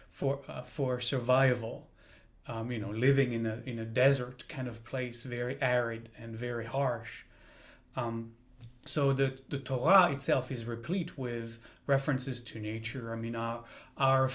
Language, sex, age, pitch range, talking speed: English, male, 30-49, 120-140 Hz, 155 wpm